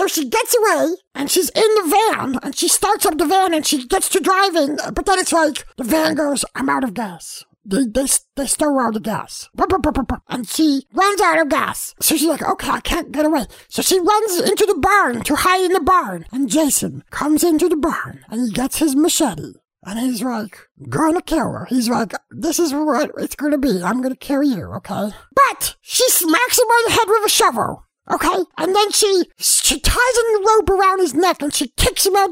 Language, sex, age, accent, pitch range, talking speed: English, male, 50-69, American, 270-380 Hz, 225 wpm